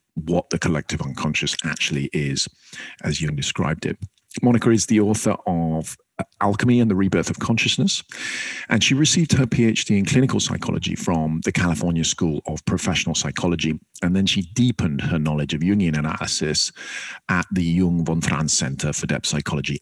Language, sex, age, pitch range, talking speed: English, male, 40-59, 80-105 Hz, 165 wpm